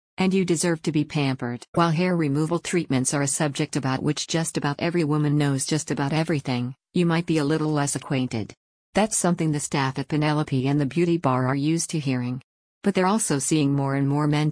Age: 50-69